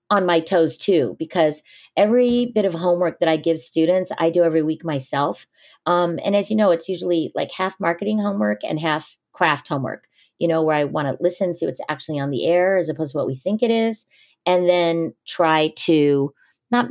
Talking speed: 210 wpm